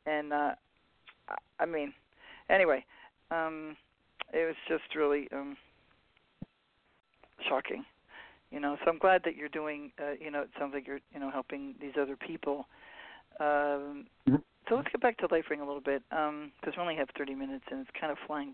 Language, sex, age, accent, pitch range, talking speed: English, male, 40-59, American, 150-185 Hz, 180 wpm